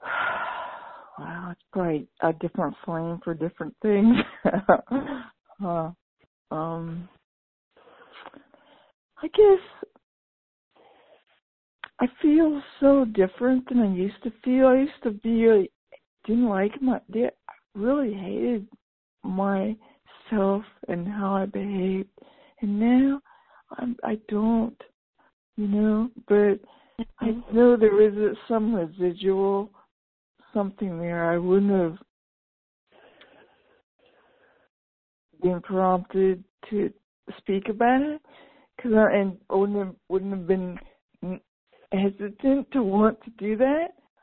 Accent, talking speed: American, 100 wpm